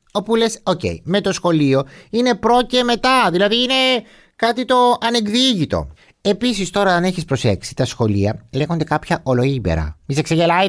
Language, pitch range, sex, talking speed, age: Greek, 115-175 Hz, male, 155 wpm, 30-49